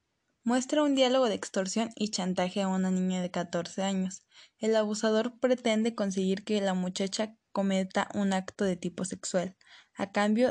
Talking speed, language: 160 wpm, Spanish